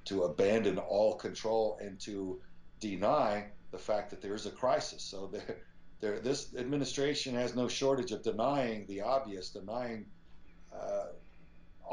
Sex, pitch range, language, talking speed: male, 95-125 Hz, English, 140 wpm